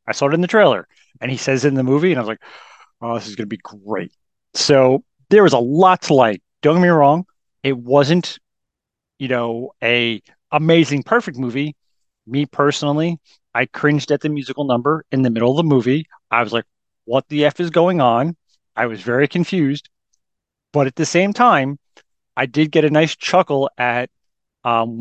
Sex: male